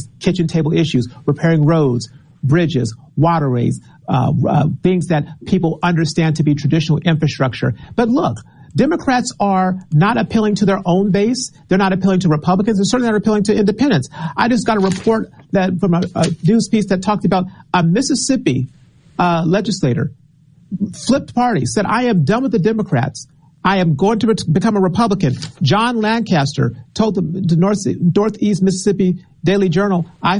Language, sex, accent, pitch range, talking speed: English, male, American, 150-205 Hz, 160 wpm